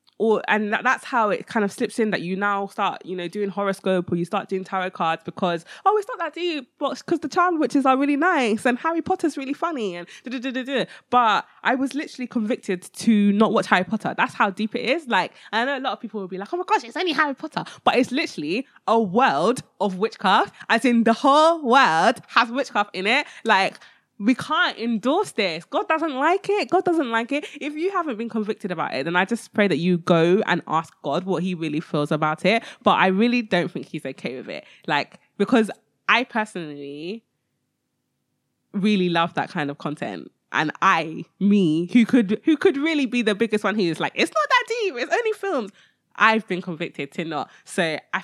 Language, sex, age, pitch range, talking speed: English, female, 20-39, 190-280 Hz, 215 wpm